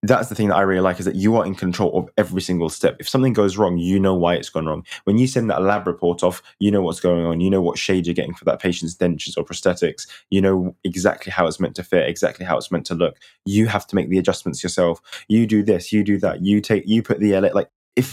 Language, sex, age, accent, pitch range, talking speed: English, male, 10-29, British, 90-105 Hz, 280 wpm